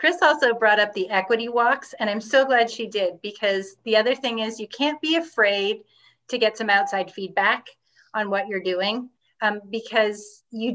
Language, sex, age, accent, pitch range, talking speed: English, female, 30-49, American, 200-235 Hz, 190 wpm